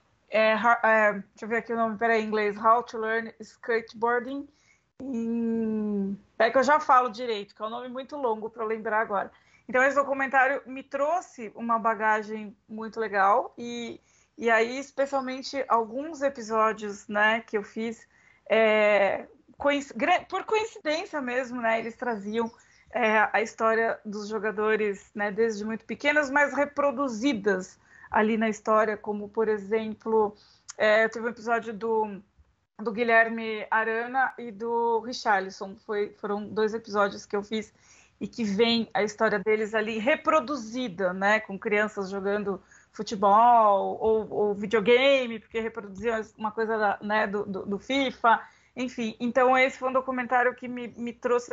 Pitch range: 215-250 Hz